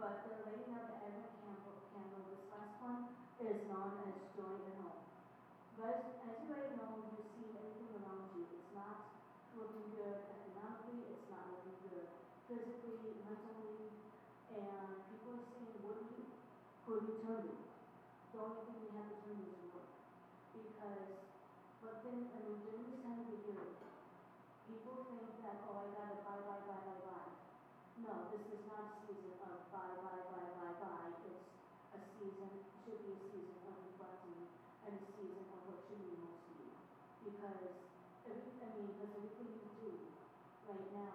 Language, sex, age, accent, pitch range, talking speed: English, female, 40-59, American, 190-220 Hz, 165 wpm